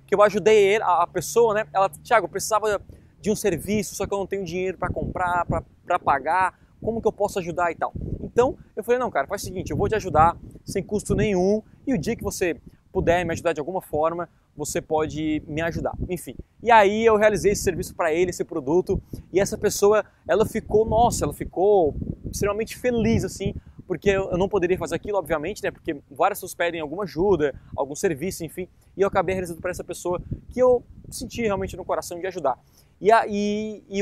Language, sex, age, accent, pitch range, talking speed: Portuguese, male, 20-39, Brazilian, 170-215 Hz, 210 wpm